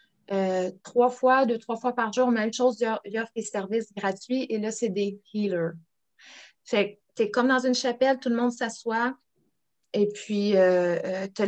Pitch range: 205-255 Hz